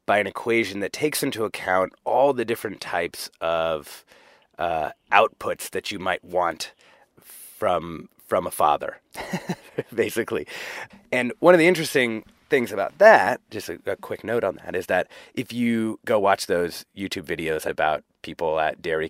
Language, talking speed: English, 160 wpm